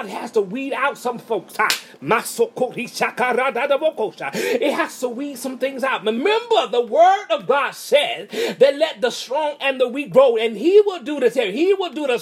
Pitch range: 225-335 Hz